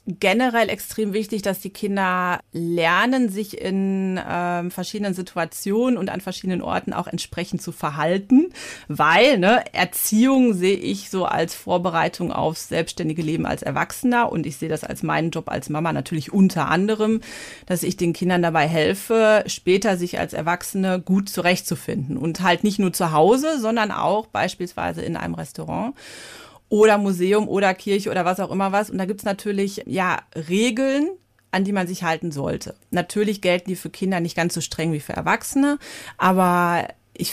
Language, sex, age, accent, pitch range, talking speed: German, female, 30-49, German, 175-225 Hz, 165 wpm